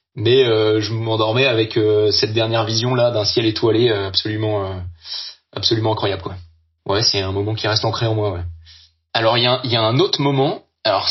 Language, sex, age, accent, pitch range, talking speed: French, male, 30-49, French, 100-120 Hz, 215 wpm